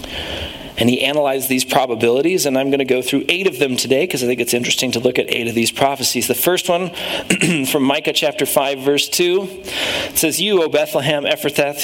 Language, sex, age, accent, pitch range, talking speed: English, male, 40-59, American, 135-165 Hz, 215 wpm